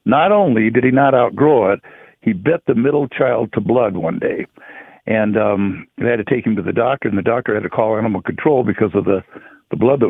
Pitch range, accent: 110-130 Hz, American